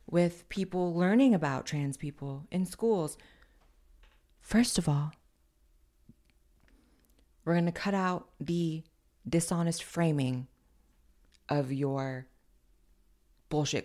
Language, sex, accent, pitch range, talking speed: English, female, American, 125-180 Hz, 95 wpm